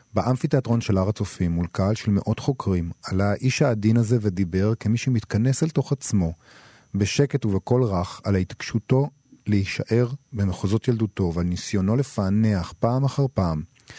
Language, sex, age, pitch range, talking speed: Hebrew, male, 40-59, 95-120 Hz, 140 wpm